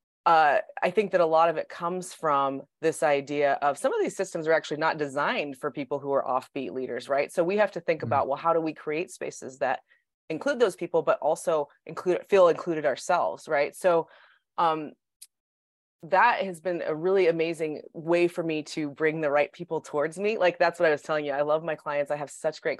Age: 20-39